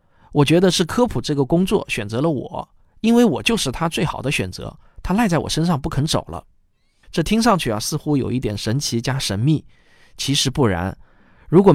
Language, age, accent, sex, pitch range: Chinese, 20-39, native, male, 115-185 Hz